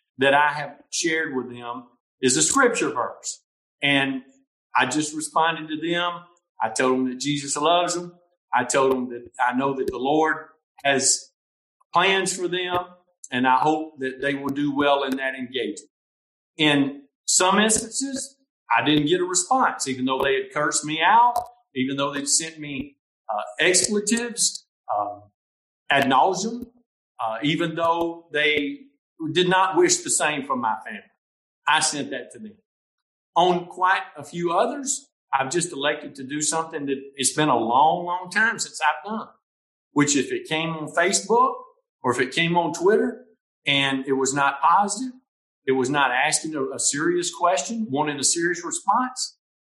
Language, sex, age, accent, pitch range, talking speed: English, male, 50-69, American, 140-205 Hz, 170 wpm